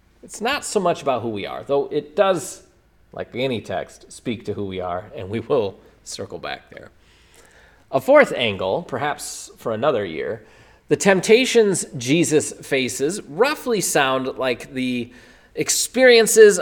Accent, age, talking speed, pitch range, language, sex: American, 30-49, 150 wpm, 115-155 Hz, English, male